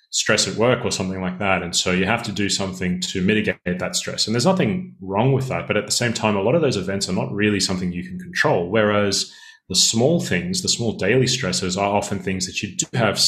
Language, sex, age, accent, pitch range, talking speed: English, male, 30-49, Australian, 95-120 Hz, 255 wpm